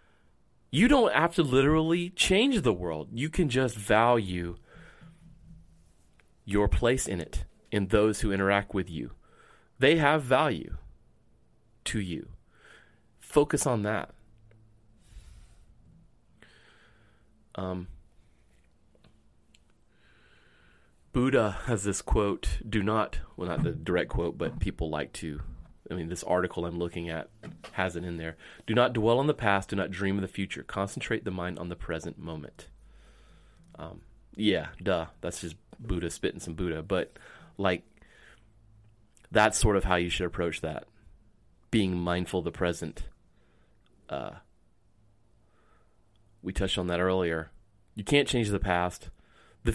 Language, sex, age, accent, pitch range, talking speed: English, male, 30-49, American, 85-110 Hz, 135 wpm